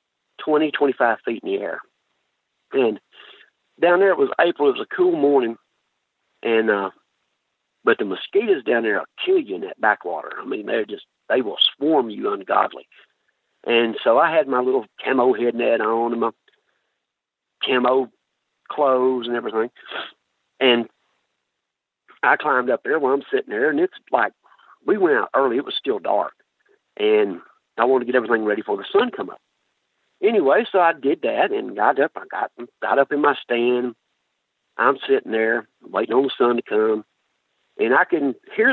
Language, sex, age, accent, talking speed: English, male, 50-69, American, 170 wpm